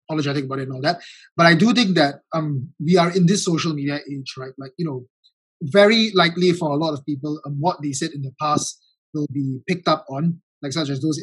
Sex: male